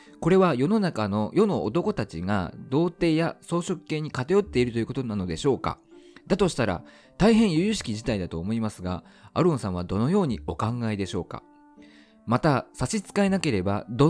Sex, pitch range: male, 95-155 Hz